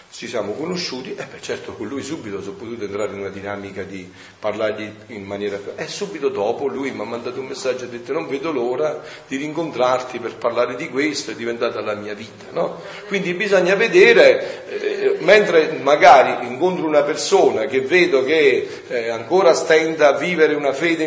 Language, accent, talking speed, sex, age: Italian, native, 185 wpm, male, 40-59